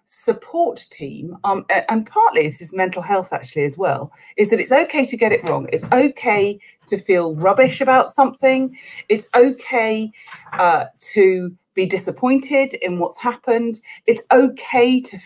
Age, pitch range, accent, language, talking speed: 40-59, 165-235 Hz, British, English, 155 wpm